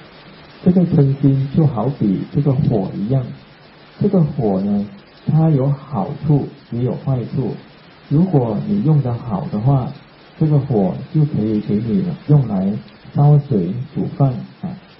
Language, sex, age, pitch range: Thai, male, 50-69, 125-165 Hz